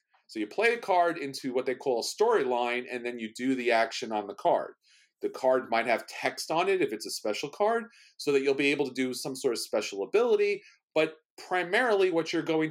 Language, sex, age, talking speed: English, male, 40-59, 230 wpm